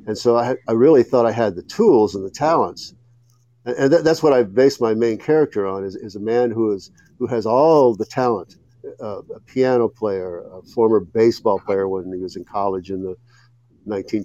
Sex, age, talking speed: male, 50-69, 210 wpm